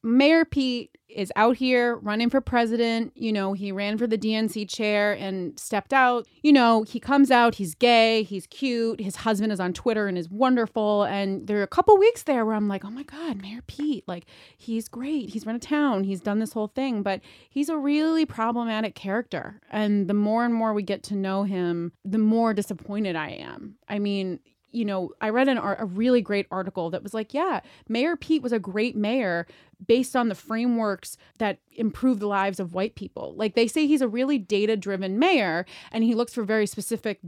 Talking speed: 215 wpm